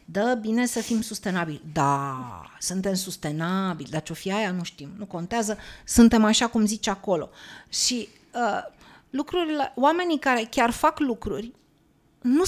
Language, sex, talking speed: Romanian, female, 145 wpm